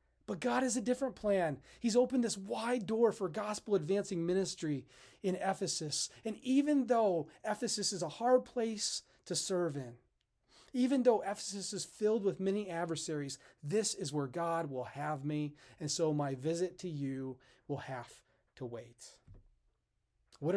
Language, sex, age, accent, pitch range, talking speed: English, male, 30-49, American, 140-190 Hz, 160 wpm